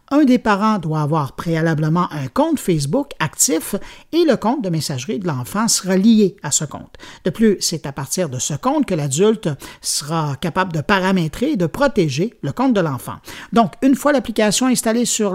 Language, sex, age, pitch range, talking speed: French, male, 50-69, 160-230 Hz, 190 wpm